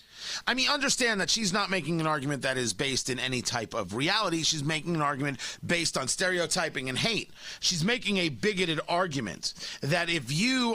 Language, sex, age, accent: English, male, 40-59, American